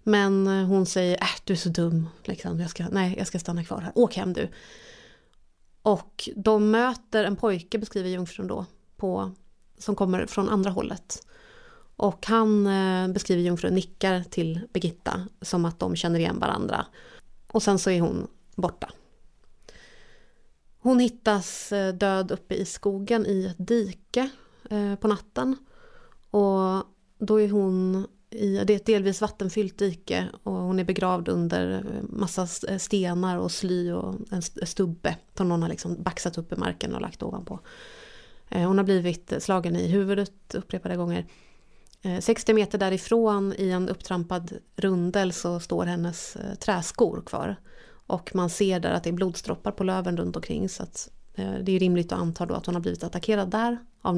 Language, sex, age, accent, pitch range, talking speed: Swedish, female, 30-49, native, 180-210 Hz, 165 wpm